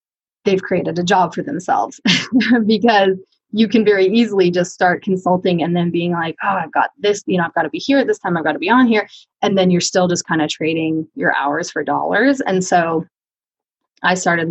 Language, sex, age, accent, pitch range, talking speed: English, female, 20-39, American, 170-205 Hz, 225 wpm